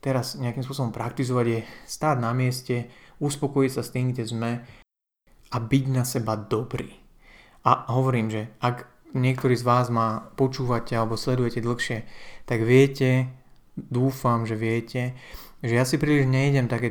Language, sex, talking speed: Slovak, male, 150 wpm